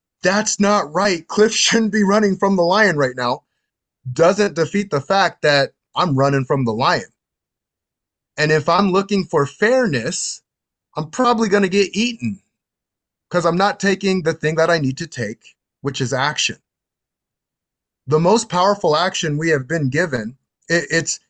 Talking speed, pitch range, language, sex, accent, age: 160 wpm, 140-195 Hz, English, male, American, 30-49